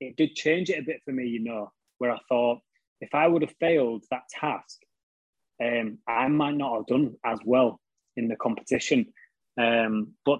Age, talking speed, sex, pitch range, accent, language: 20-39, 190 wpm, male, 115-135 Hz, British, English